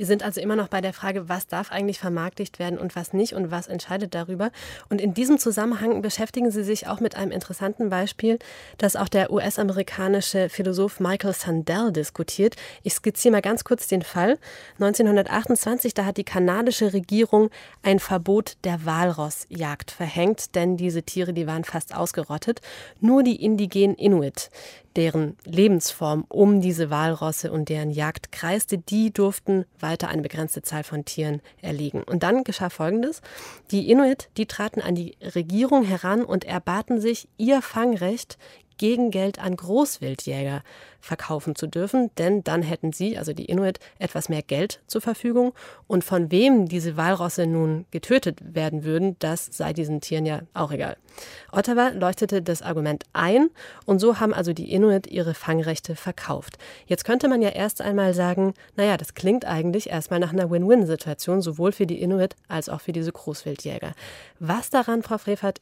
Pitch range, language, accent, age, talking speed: 165-210 Hz, German, German, 30-49, 165 wpm